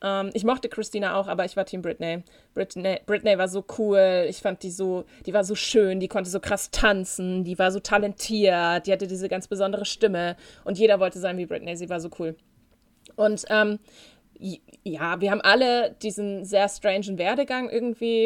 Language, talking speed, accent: German, 195 wpm, German